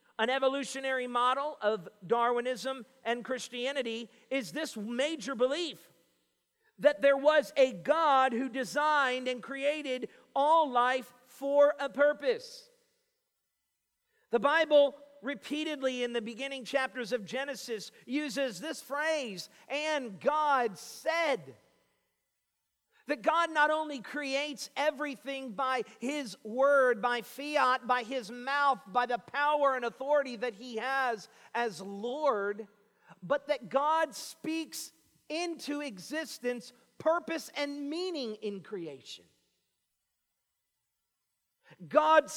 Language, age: English, 50-69